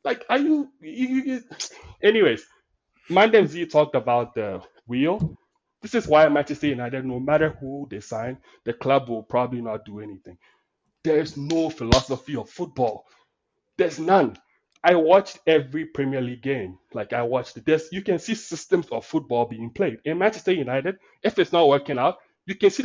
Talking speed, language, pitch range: 175 wpm, English, 130-190 Hz